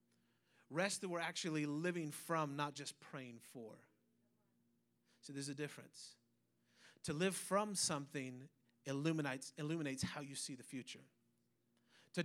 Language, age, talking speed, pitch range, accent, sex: English, 30-49, 125 wpm, 140-190 Hz, American, male